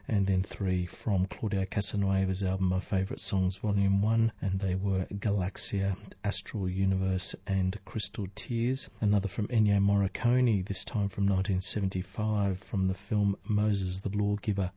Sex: male